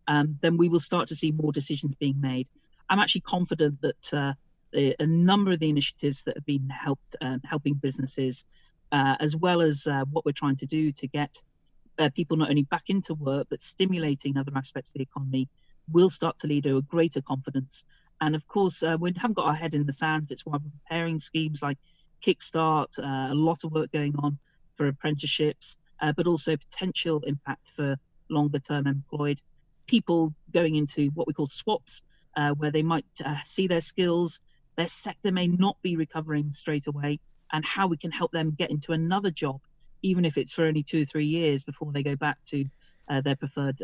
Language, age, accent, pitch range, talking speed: English, 40-59, British, 140-165 Hz, 205 wpm